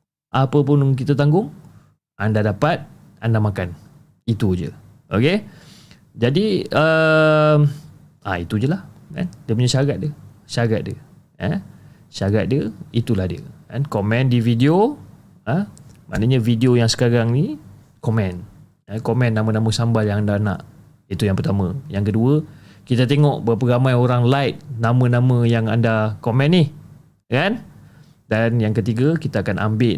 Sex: male